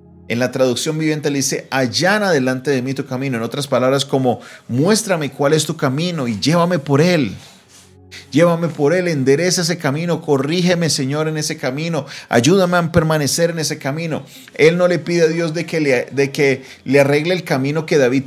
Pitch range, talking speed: 130-165 Hz, 185 wpm